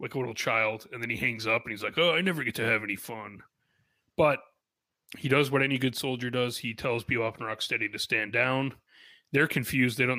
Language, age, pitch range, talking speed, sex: English, 30-49, 110-135 Hz, 245 wpm, male